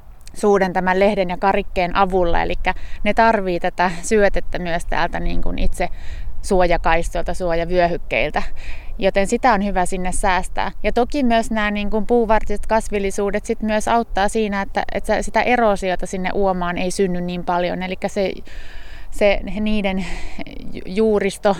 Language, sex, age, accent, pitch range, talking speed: Finnish, female, 20-39, native, 185-210 Hz, 135 wpm